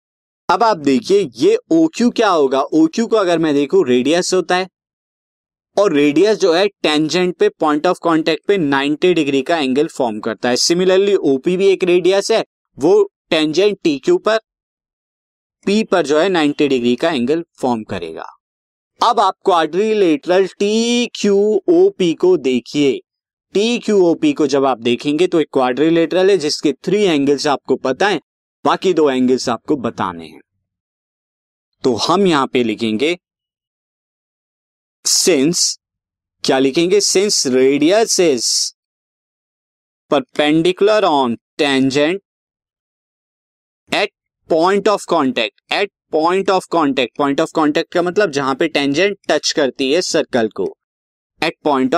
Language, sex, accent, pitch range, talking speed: Hindi, male, native, 135-200 Hz, 135 wpm